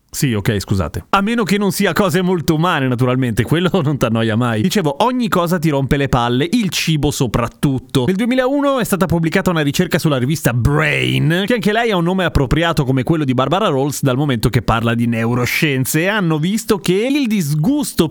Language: Italian